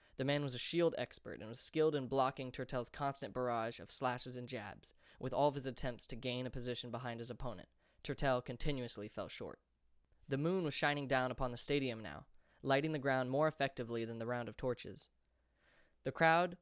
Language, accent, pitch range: English, American, 120-140 Hz